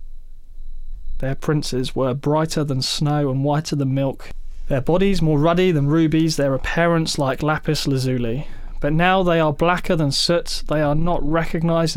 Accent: British